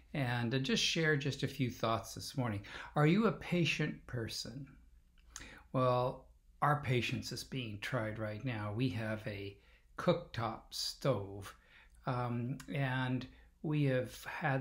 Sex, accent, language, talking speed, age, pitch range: male, American, English, 130 wpm, 50-69, 110-140 Hz